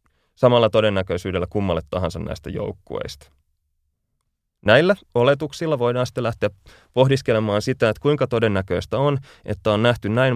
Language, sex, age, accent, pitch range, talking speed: Finnish, male, 30-49, native, 90-120 Hz, 120 wpm